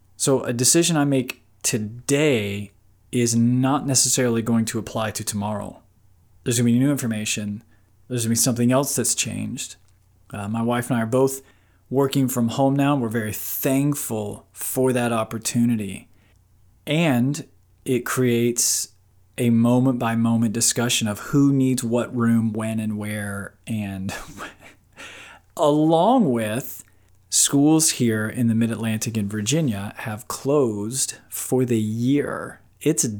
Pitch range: 105-135 Hz